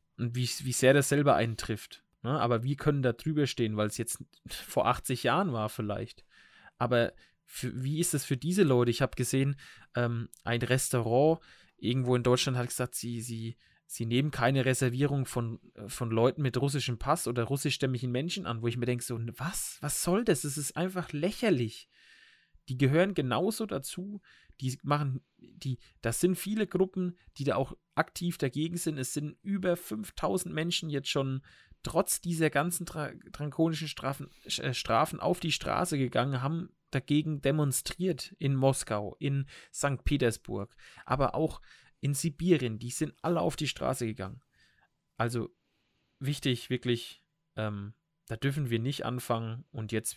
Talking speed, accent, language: 165 wpm, German, German